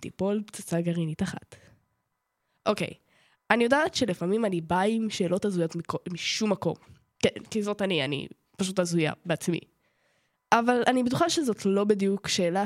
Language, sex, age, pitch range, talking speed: Hebrew, female, 10-29, 180-240 Hz, 150 wpm